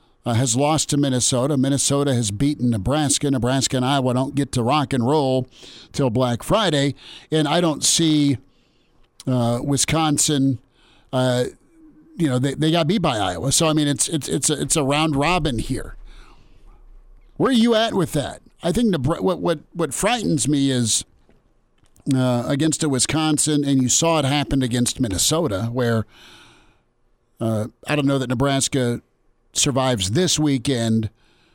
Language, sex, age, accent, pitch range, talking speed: English, male, 50-69, American, 120-150 Hz, 160 wpm